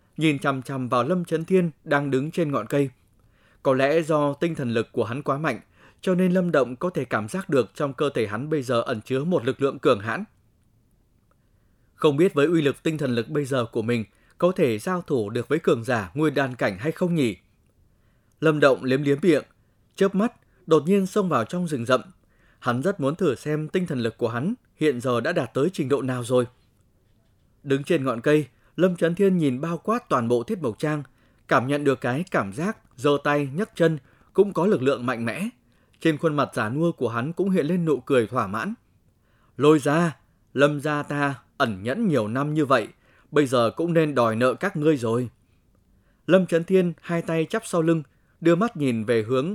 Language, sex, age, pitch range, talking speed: Vietnamese, male, 20-39, 120-165 Hz, 220 wpm